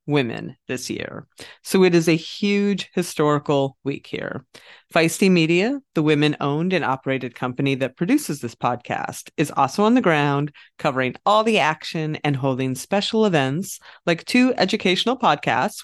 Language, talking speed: English, 150 wpm